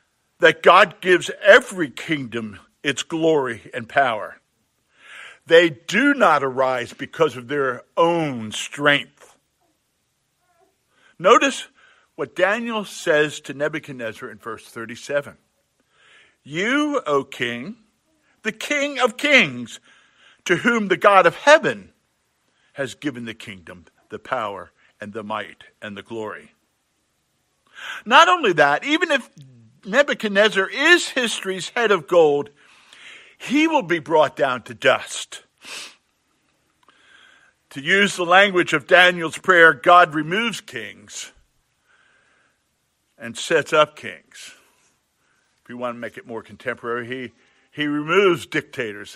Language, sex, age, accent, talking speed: English, male, 50-69, American, 115 wpm